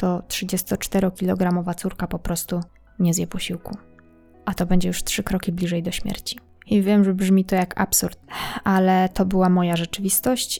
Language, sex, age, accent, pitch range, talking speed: Polish, female, 20-39, native, 180-205 Hz, 165 wpm